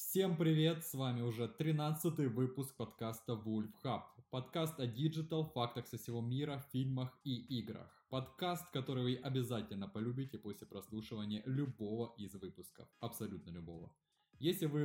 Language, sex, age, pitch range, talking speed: Russian, male, 20-39, 115-150 Hz, 135 wpm